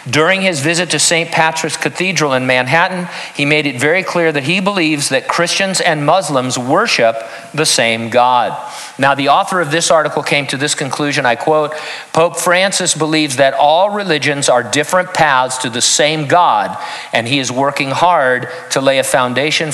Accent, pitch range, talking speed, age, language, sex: American, 125-160 Hz, 180 wpm, 50-69, English, male